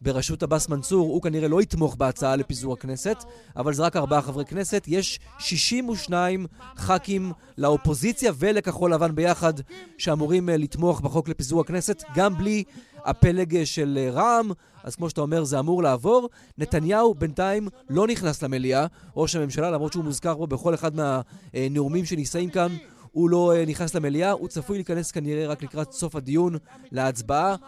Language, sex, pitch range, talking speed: Hebrew, male, 155-195 Hz, 155 wpm